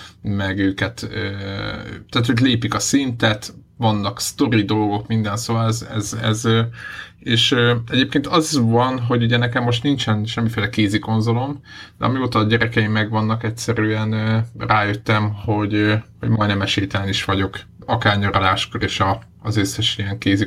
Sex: male